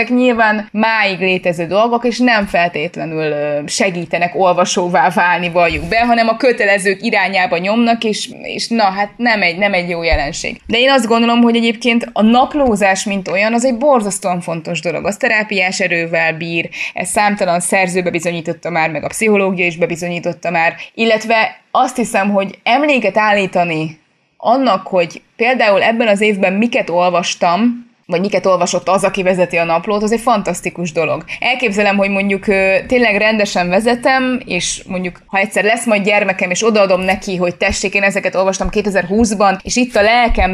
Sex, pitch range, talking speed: female, 180-225 Hz, 165 wpm